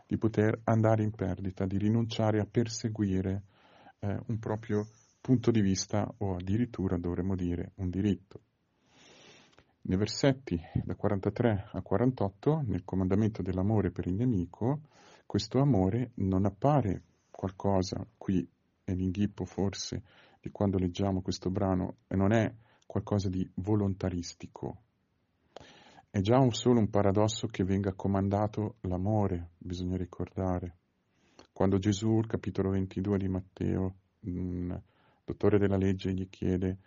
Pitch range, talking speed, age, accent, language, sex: 90-110 Hz, 125 wpm, 40-59, native, Italian, male